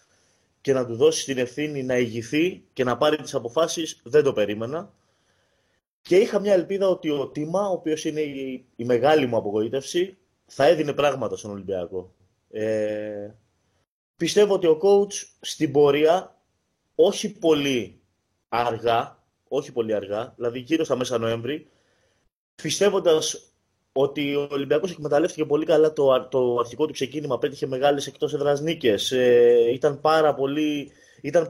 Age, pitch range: 20-39, 125-170 Hz